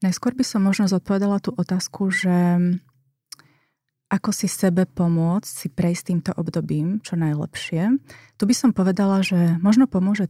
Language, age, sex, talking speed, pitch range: Slovak, 30-49, female, 145 wpm, 170-190 Hz